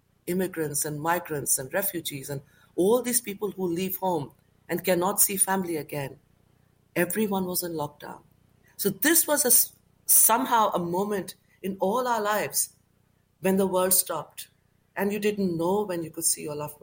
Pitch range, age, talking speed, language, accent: 150-190 Hz, 60-79, 165 wpm, English, Indian